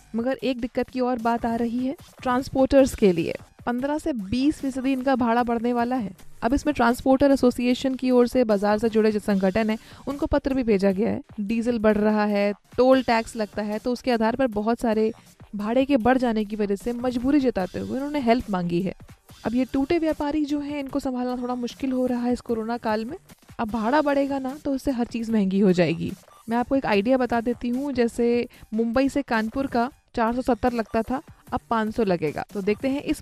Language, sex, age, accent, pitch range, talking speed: Hindi, female, 20-39, native, 215-265 Hz, 215 wpm